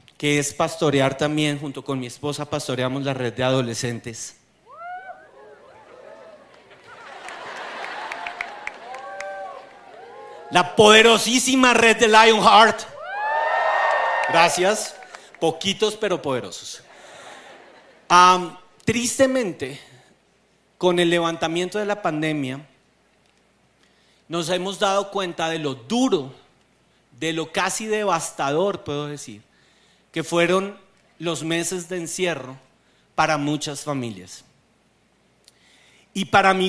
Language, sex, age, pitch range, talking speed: Spanish, male, 40-59, 150-200 Hz, 90 wpm